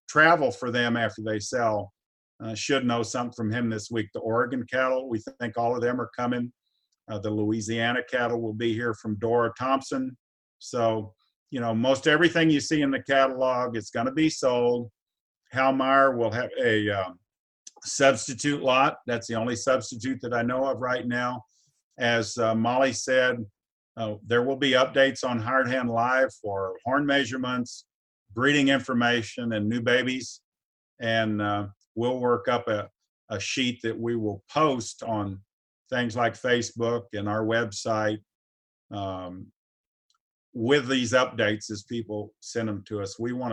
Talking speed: 160 wpm